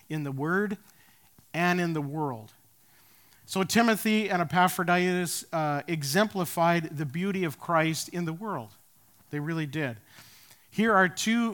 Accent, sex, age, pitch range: American, male, 50-69, 140-180 Hz